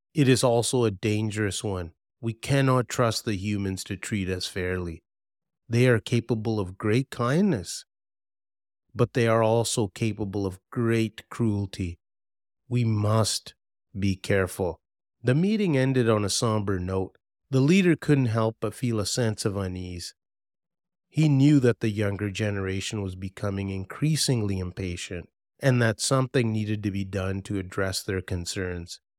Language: English